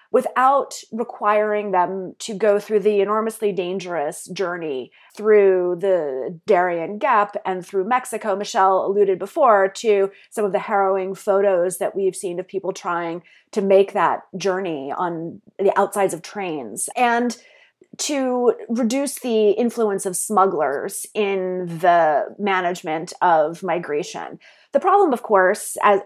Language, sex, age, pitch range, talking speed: English, female, 30-49, 185-220 Hz, 135 wpm